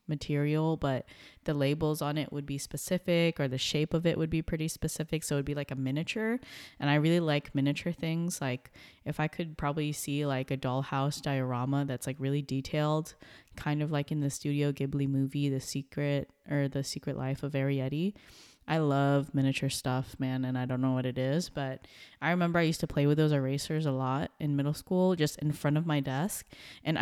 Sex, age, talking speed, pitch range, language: female, 20-39, 210 wpm, 135-155 Hz, English